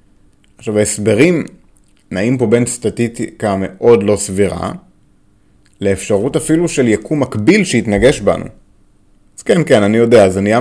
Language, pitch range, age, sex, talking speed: Hebrew, 100-130 Hz, 30-49, male, 130 wpm